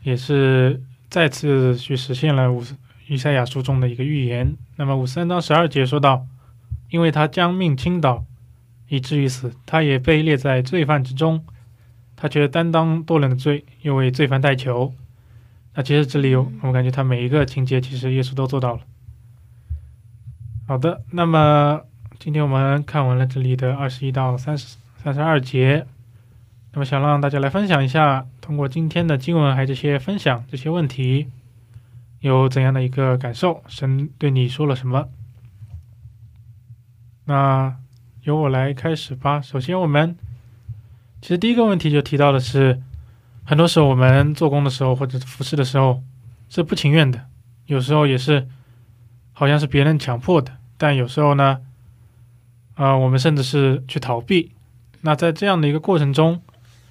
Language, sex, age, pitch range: Korean, male, 20-39, 120-150 Hz